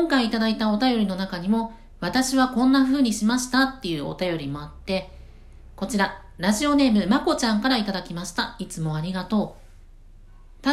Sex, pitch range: female, 175-245 Hz